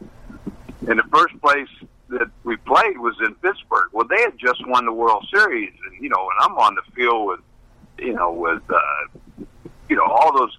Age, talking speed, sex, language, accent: 60-79, 200 wpm, male, English, American